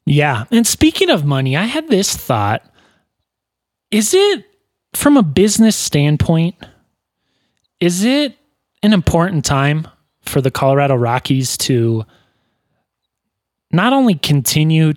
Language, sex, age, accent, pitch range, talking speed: English, male, 20-39, American, 125-170 Hz, 110 wpm